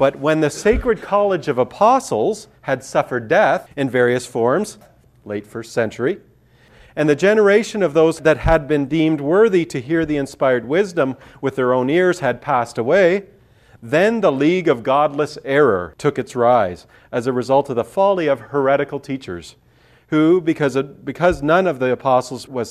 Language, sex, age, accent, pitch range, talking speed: English, male, 40-59, American, 120-160 Hz, 165 wpm